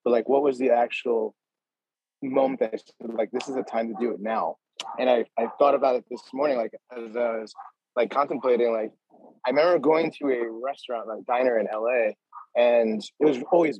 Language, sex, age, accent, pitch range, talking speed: English, male, 30-49, American, 115-135 Hz, 210 wpm